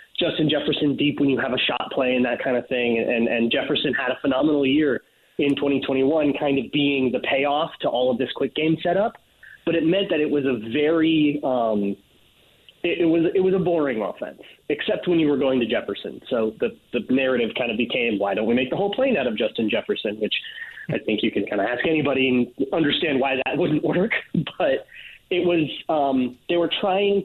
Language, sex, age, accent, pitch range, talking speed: English, male, 30-49, American, 125-170 Hz, 220 wpm